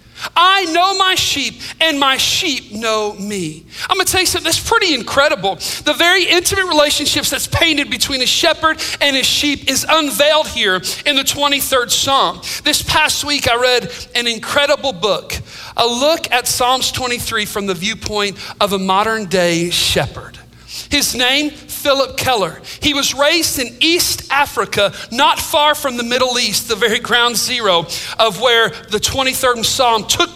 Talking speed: 165 wpm